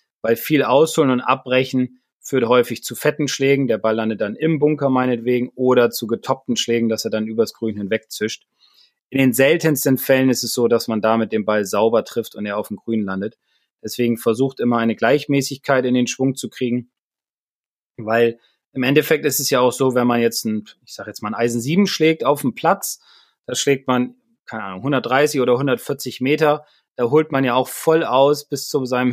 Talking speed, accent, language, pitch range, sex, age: 205 wpm, German, German, 115-140 Hz, male, 30-49